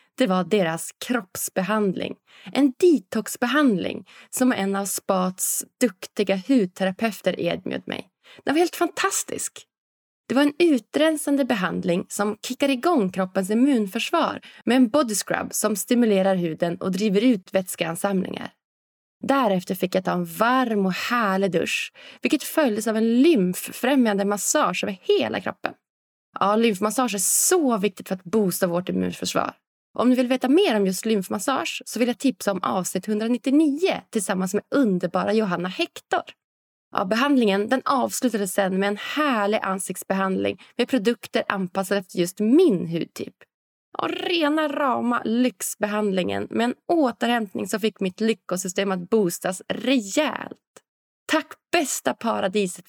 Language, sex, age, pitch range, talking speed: Swedish, female, 20-39, 190-260 Hz, 135 wpm